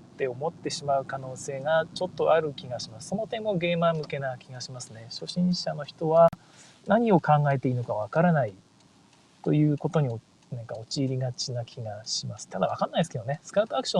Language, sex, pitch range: Japanese, male, 130-175 Hz